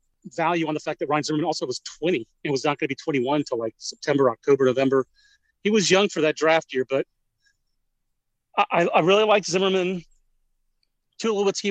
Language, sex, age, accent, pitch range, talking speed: English, male, 40-59, American, 150-195 Hz, 185 wpm